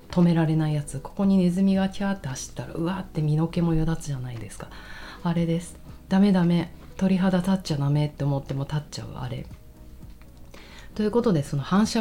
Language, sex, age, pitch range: Japanese, female, 40-59, 140-180 Hz